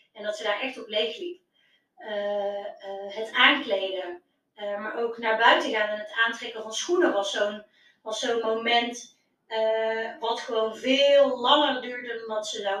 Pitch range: 215-275 Hz